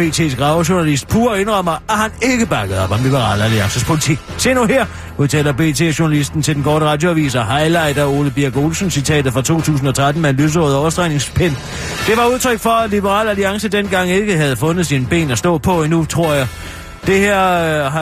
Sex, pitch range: male, 145-200 Hz